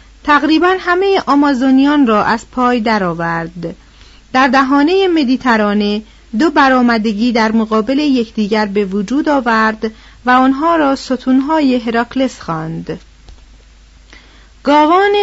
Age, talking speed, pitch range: 40-59, 100 wpm, 230-300 Hz